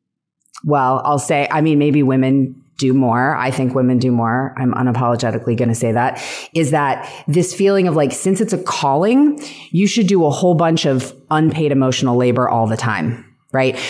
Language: English